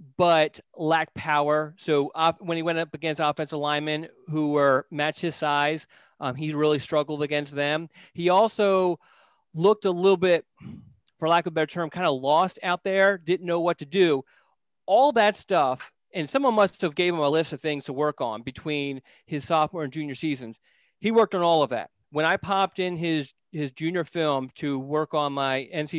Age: 30-49